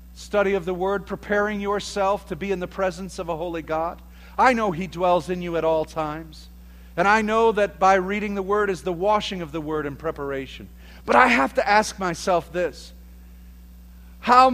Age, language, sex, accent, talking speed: 50-69, English, male, American, 200 wpm